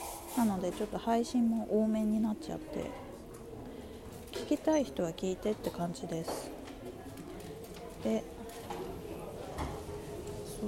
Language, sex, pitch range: Japanese, female, 185-255 Hz